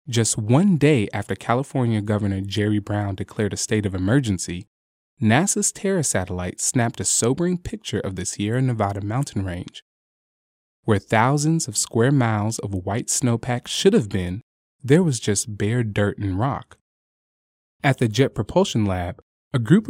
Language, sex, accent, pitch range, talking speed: English, male, American, 100-140 Hz, 155 wpm